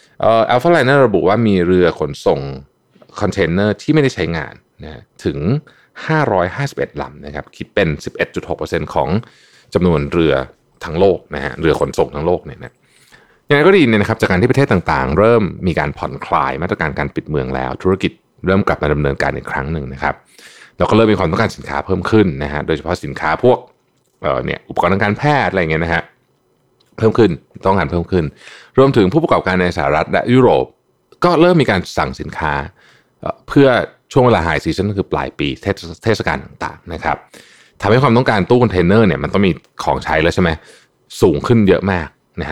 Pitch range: 80-130 Hz